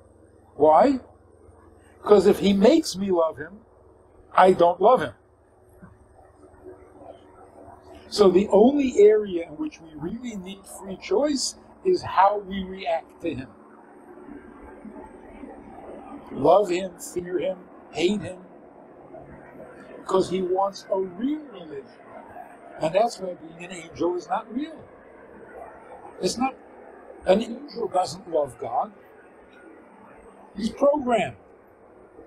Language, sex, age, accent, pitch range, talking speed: English, male, 60-79, American, 160-230 Hz, 110 wpm